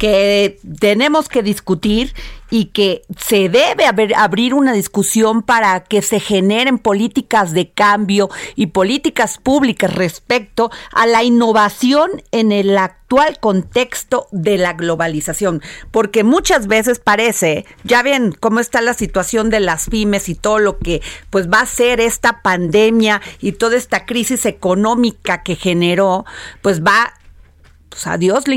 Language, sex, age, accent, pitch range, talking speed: Spanish, female, 40-59, Mexican, 195-245 Hz, 145 wpm